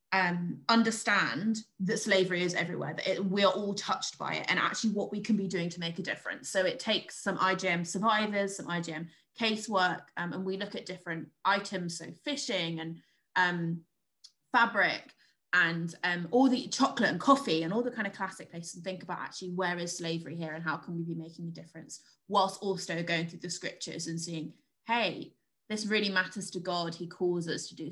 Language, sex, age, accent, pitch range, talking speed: English, female, 20-39, British, 170-200 Hz, 200 wpm